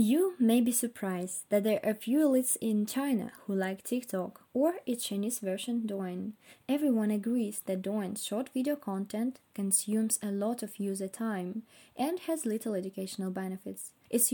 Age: 20-39